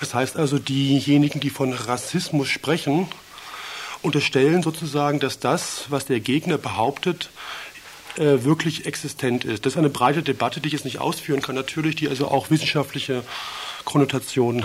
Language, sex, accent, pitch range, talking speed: German, male, German, 135-165 Hz, 150 wpm